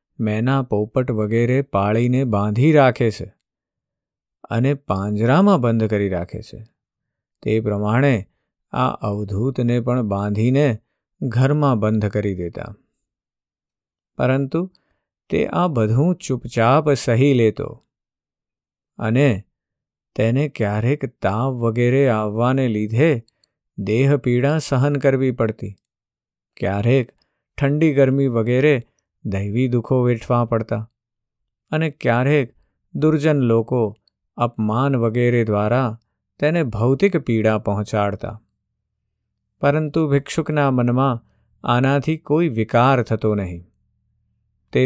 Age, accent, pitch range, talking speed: 50-69, native, 110-135 Hz, 80 wpm